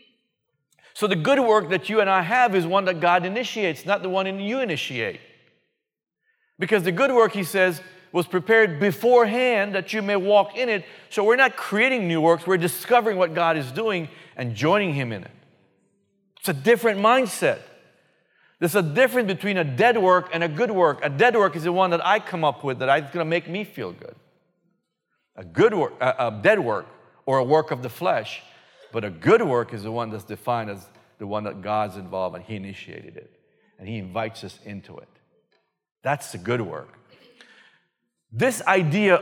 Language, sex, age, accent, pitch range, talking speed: English, male, 50-69, American, 130-200 Hz, 195 wpm